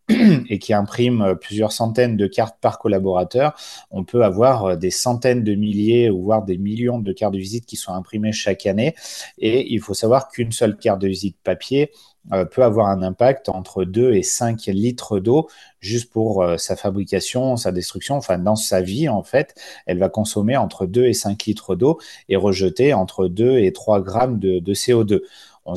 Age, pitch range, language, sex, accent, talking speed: 30-49, 100-125 Hz, French, male, French, 190 wpm